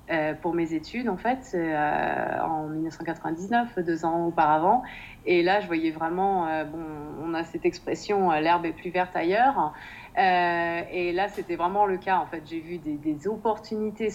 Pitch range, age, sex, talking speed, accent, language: 170-215 Hz, 30-49, female, 170 wpm, French, French